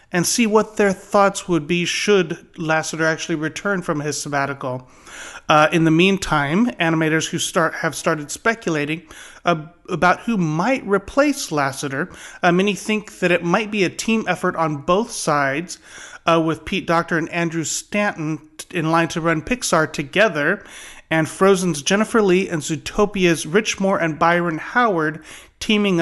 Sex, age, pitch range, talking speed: male, 30-49, 155-185 Hz, 155 wpm